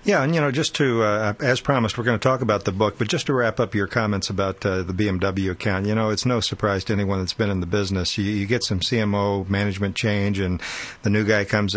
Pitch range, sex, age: 95-115 Hz, male, 50-69